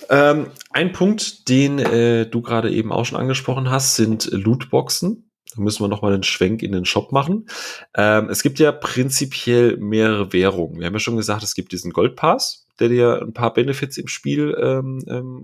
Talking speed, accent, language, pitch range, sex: 185 wpm, German, German, 105-135 Hz, male